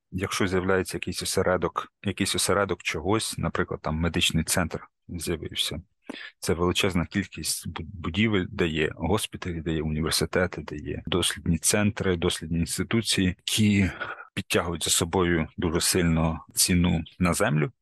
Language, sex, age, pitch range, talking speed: Ukrainian, male, 30-49, 85-100 Hz, 125 wpm